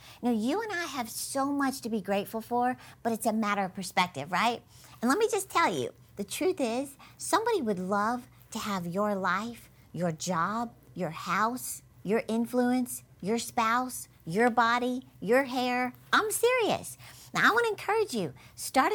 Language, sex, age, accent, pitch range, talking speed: English, female, 50-69, American, 195-250 Hz, 170 wpm